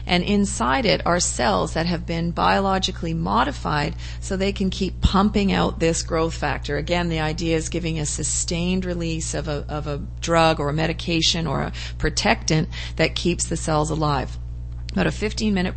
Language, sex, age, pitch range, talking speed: English, female, 40-59, 150-180 Hz, 175 wpm